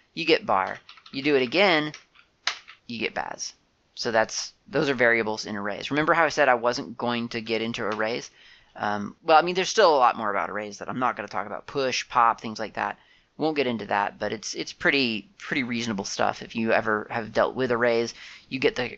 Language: English